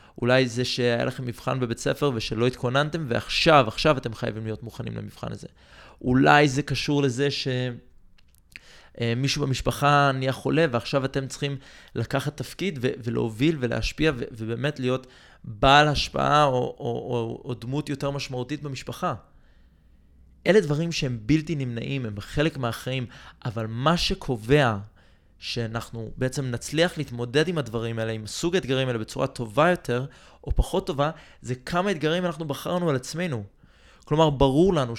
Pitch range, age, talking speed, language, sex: 120-150 Hz, 20-39, 140 wpm, Hebrew, male